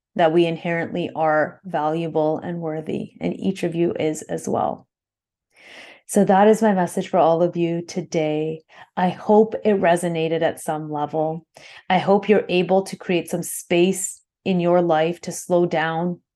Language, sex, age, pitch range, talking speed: English, female, 30-49, 160-185 Hz, 165 wpm